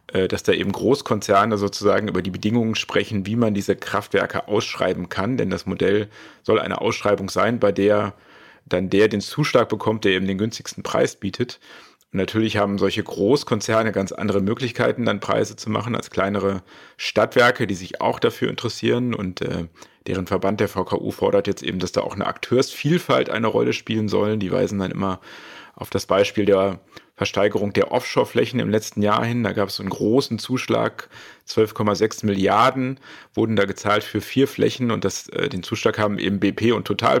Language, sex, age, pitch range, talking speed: German, male, 40-59, 95-110 Hz, 175 wpm